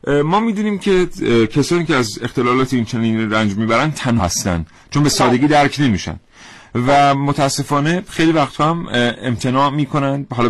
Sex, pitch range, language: male, 110-145 Hz, Persian